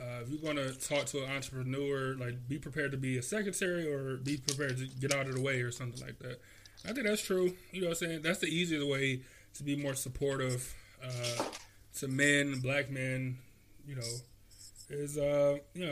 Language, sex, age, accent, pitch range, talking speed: English, male, 20-39, American, 115-150 Hz, 210 wpm